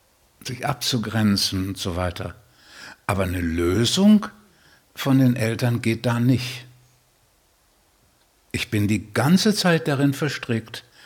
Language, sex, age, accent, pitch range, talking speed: German, male, 60-79, German, 100-155 Hz, 115 wpm